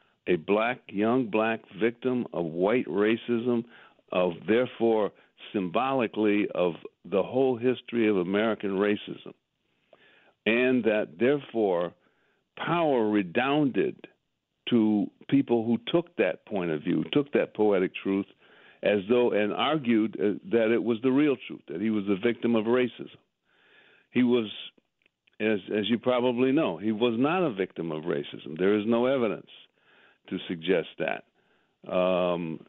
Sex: male